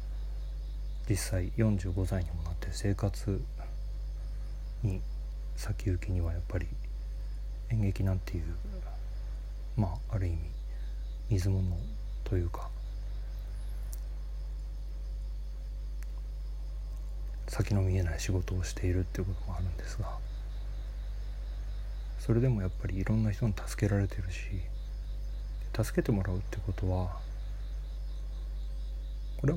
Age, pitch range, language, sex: 40-59, 75-105 Hz, Japanese, male